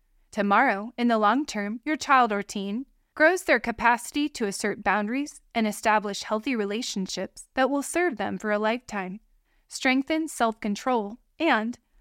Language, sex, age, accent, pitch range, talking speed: English, female, 20-39, American, 205-275 Hz, 145 wpm